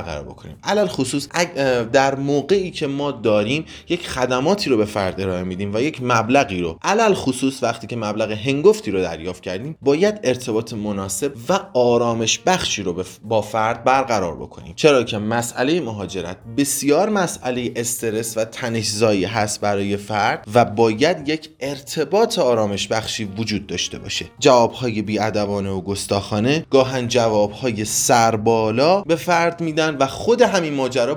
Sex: male